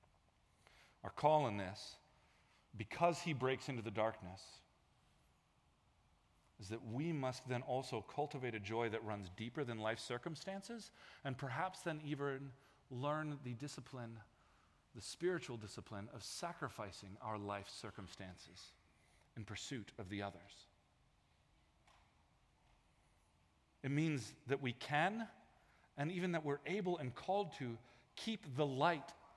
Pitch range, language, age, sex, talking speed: 115-175 Hz, English, 40-59, male, 125 wpm